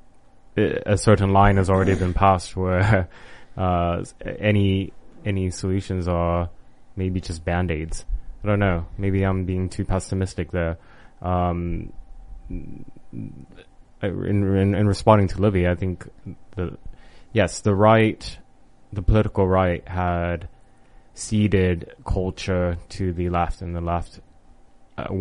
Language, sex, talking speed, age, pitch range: English, male, 125 wpm, 20-39, 90-100 Hz